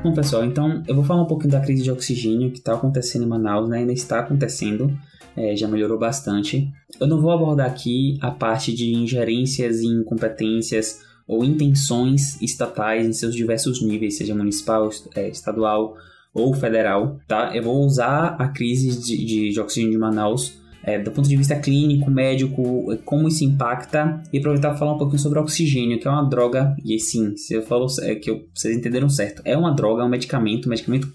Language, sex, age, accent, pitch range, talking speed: Portuguese, male, 10-29, Brazilian, 115-150 Hz, 195 wpm